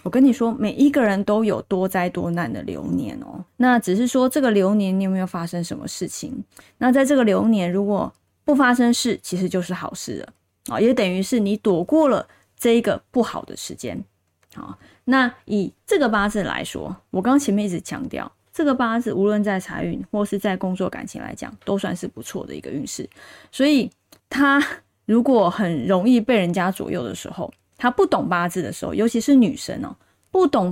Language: Chinese